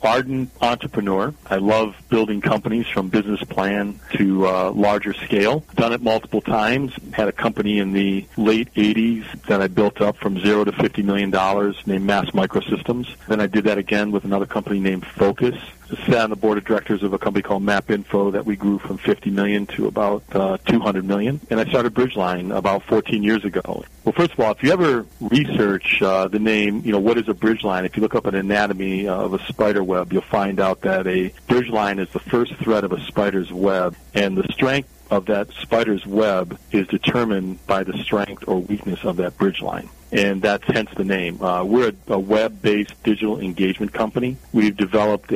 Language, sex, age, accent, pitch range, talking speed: English, male, 40-59, American, 95-110 Hz, 205 wpm